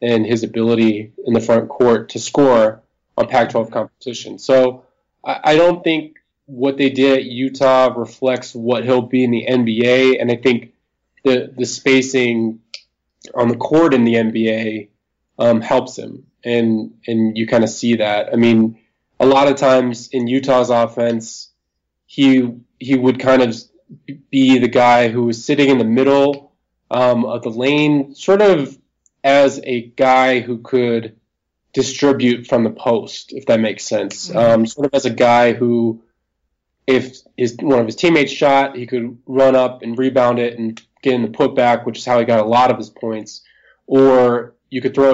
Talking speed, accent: 175 wpm, American